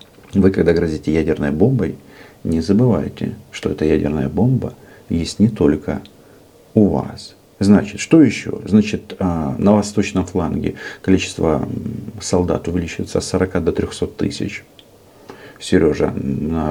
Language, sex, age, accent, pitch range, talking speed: Russian, male, 50-69, native, 85-110 Hz, 120 wpm